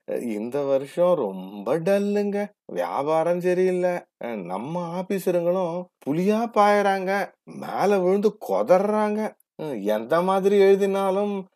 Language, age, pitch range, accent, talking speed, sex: Tamil, 30-49, 150-185 Hz, native, 85 wpm, male